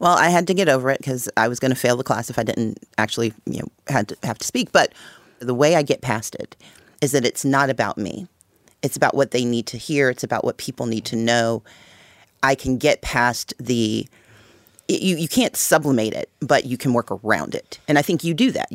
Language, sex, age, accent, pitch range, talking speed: English, female, 40-59, American, 115-145 Hz, 245 wpm